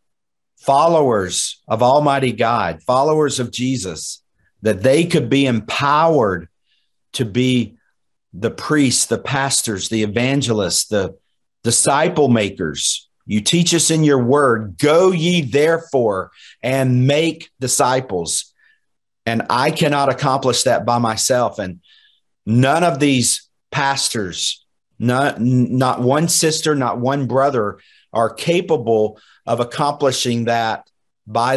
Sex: male